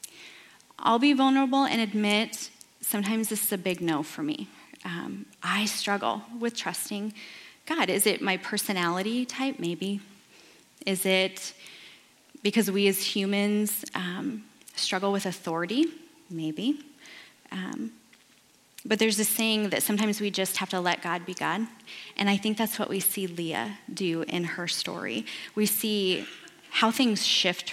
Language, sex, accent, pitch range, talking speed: English, female, American, 180-220 Hz, 145 wpm